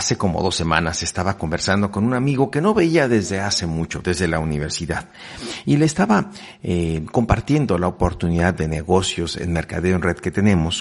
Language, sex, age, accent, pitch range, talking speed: Spanish, male, 50-69, Mexican, 85-115 Hz, 185 wpm